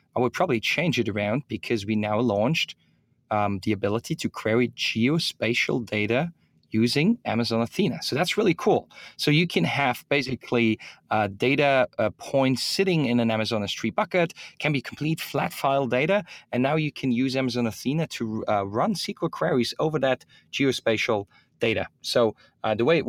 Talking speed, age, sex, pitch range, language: 170 wpm, 30-49, male, 110-135 Hz, English